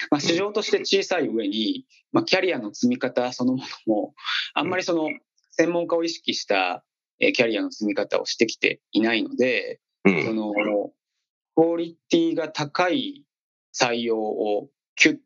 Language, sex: Japanese, male